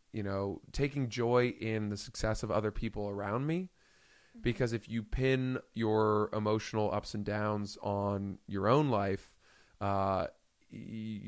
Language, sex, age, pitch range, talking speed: English, male, 20-39, 100-120 Hz, 140 wpm